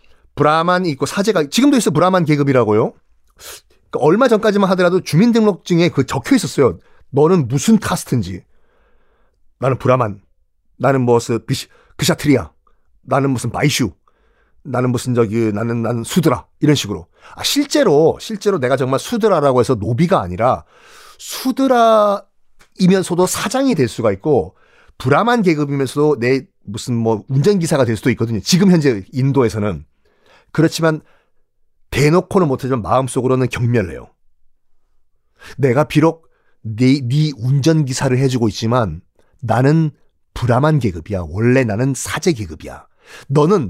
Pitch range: 120-185 Hz